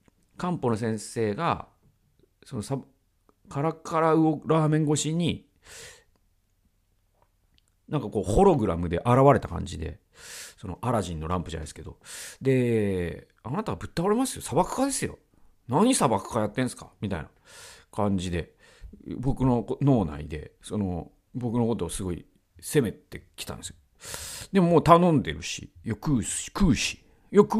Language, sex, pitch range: Japanese, male, 95-155 Hz